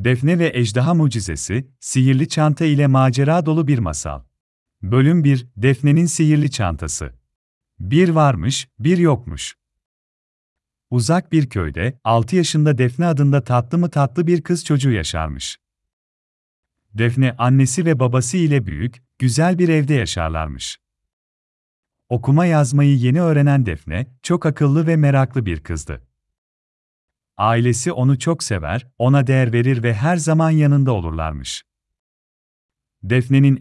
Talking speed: 120 wpm